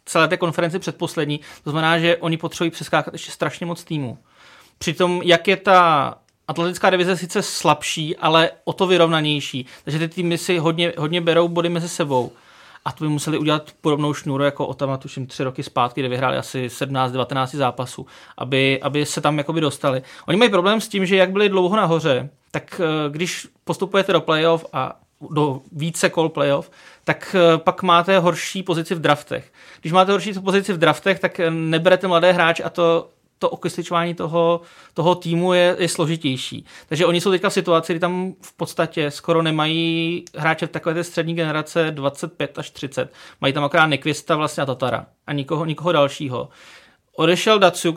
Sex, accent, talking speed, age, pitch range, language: male, native, 175 wpm, 30-49, 150-175 Hz, Czech